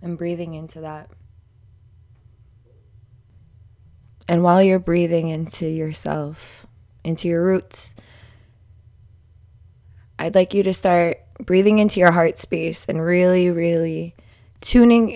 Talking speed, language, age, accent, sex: 105 wpm, English, 20-39, American, female